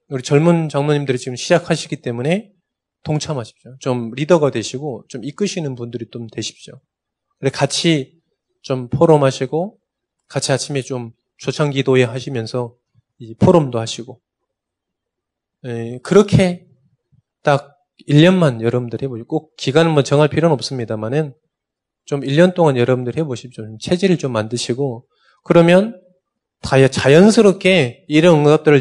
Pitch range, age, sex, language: 125-165 Hz, 20-39, male, Korean